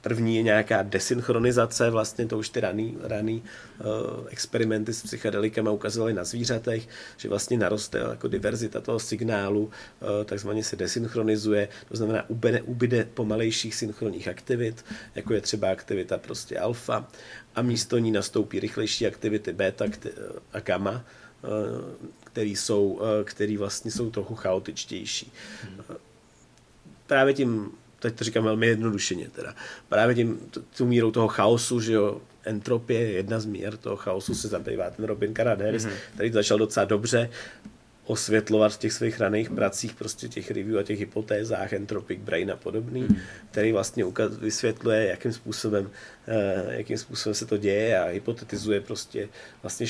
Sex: male